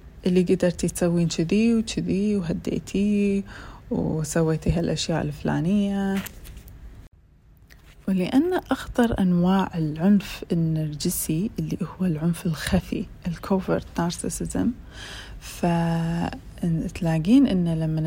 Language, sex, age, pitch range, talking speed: Arabic, female, 30-49, 165-205 Hz, 75 wpm